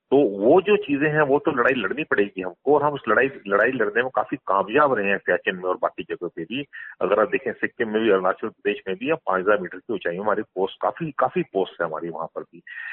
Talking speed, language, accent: 250 wpm, Hindi, native